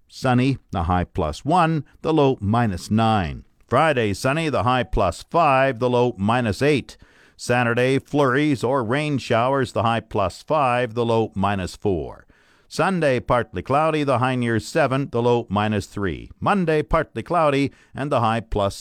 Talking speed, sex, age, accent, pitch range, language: 160 wpm, male, 50-69, American, 110-145 Hz, English